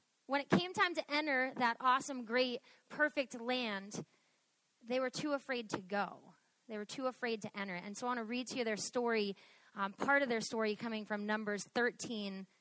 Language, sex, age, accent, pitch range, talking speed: English, female, 30-49, American, 220-275 Hz, 200 wpm